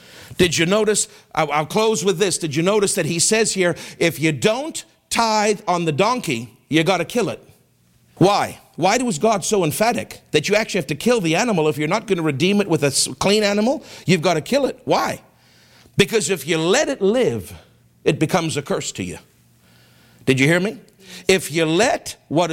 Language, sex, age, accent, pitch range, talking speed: English, male, 50-69, American, 140-190 Hz, 205 wpm